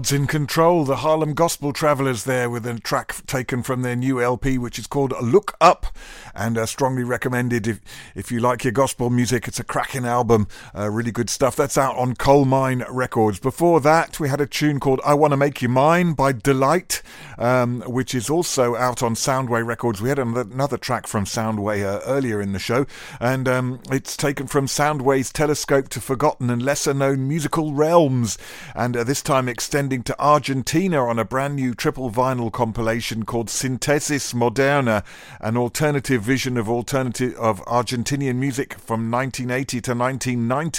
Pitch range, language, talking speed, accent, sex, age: 120-140 Hz, English, 175 wpm, British, male, 50-69